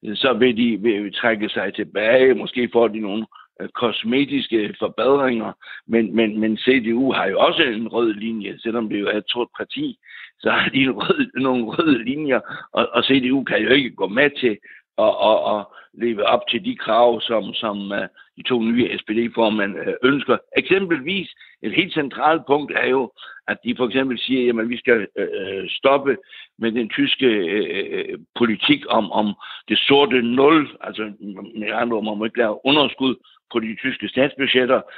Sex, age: male, 60-79